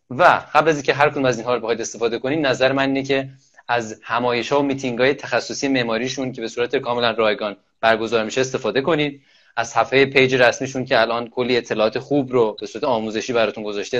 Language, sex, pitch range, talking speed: Persian, male, 110-135 Hz, 190 wpm